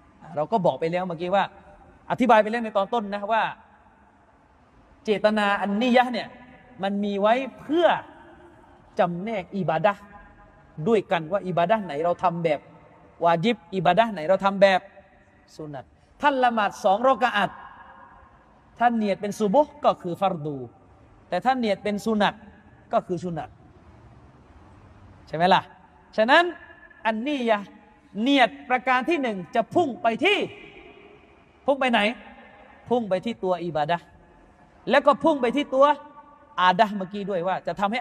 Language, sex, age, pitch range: Thai, male, 30-49, 180-260 Hz